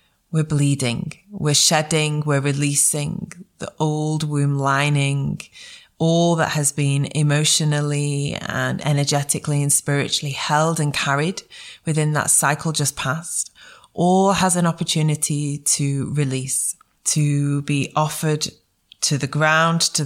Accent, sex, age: British, female, 20-39